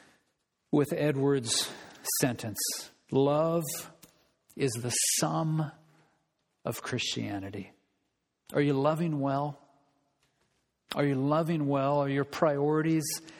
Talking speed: 90 wpm